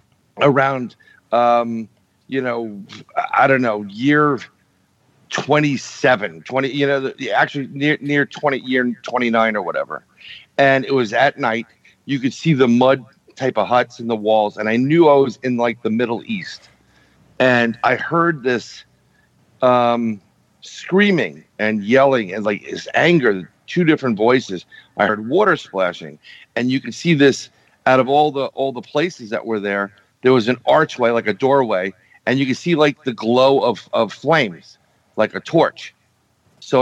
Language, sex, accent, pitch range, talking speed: English, male, American, 115-140 Hz, 170 wpm